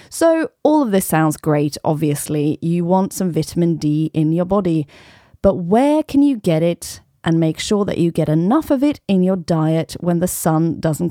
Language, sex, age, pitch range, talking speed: English, female, 30-49, 165-220 Hz, 200 wpm